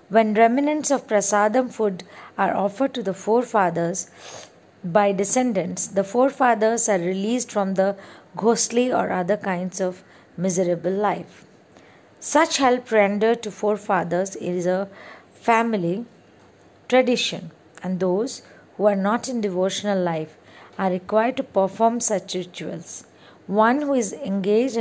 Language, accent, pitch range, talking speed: English, Indian, 190-245 Hz, 125 wpm